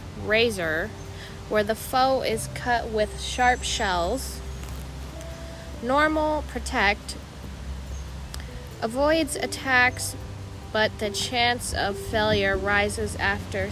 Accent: American